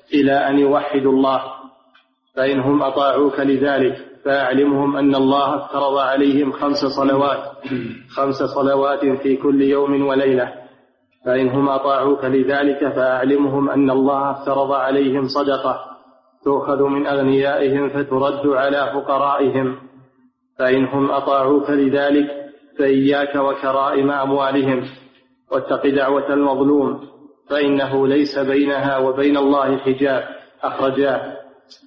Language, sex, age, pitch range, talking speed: Arabic, male, 30-49, 135-140 Hz, 95 wpm